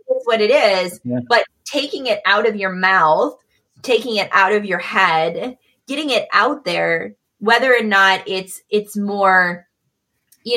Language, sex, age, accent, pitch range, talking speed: English, female, 20-39, American, 175-215 Hz, 160 wpm